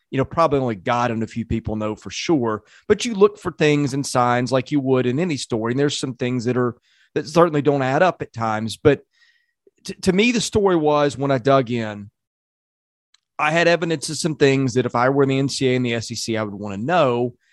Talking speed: 240 wpm